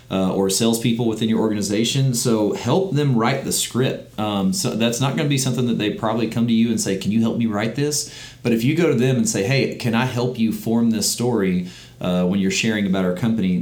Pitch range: 100-120 Hz